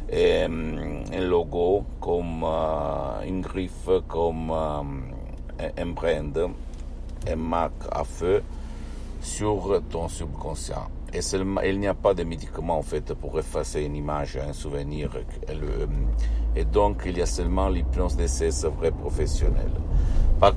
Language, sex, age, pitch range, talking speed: Italian, male, 60-79, 75-90 Hz, 145 wpm